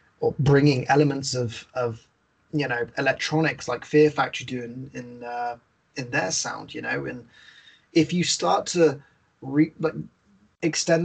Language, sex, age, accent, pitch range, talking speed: English, male, 20-39, British, 135-150 Hz, 150 wpm